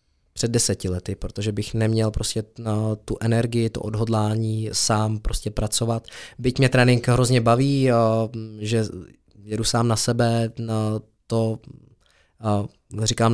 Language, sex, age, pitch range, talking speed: Czech, male, 20-39, 110-120 Hz, 115 wpm